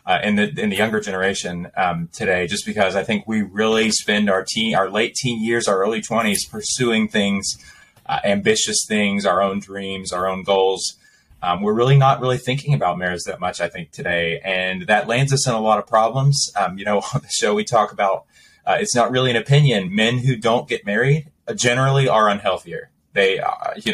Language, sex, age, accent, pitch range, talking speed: English, male, 20-39, American, 105-150 Hz, 215 wpm